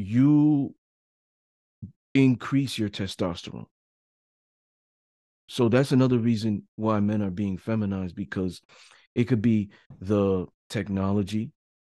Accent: American